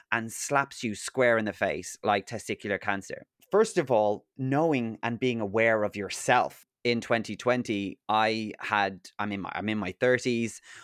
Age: 30-49